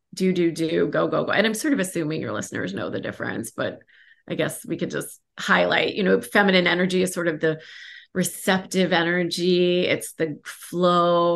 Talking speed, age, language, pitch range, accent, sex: 190 wpm, 30-49, English, 170-215 Hz, American, female